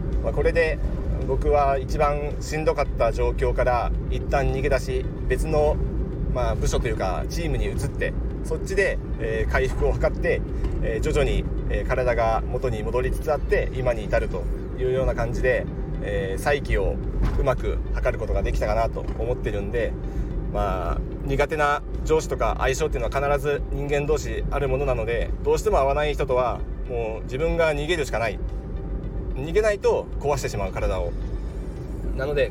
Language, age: Japanese, 40-59